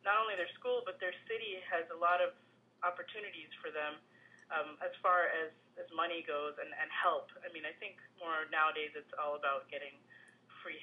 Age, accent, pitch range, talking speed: 30-49, American, 160-200 Hz, 195 wpm